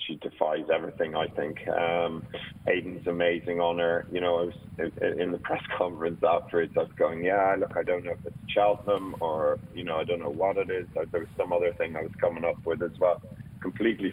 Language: English